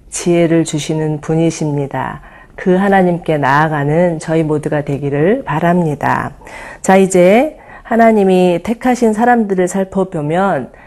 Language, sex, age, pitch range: Korean, female, 40-59, 160-215 Hz